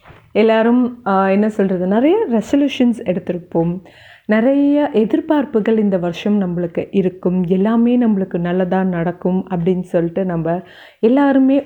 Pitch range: 185-250 Hz